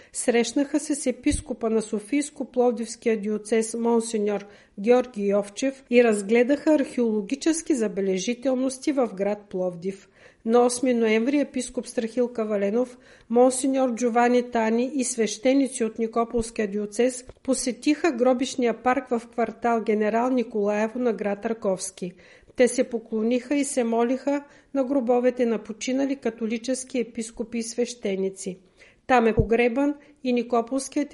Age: 50-69